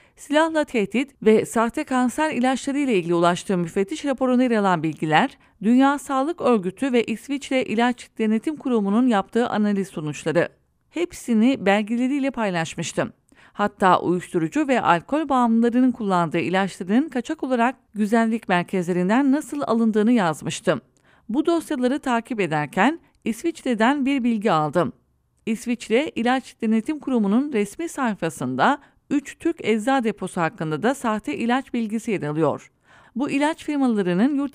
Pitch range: 195-270 Hz